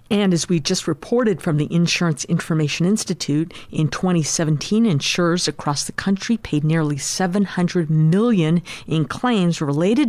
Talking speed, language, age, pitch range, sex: 135 wpm, English, 50-69, 160-220 Hz, female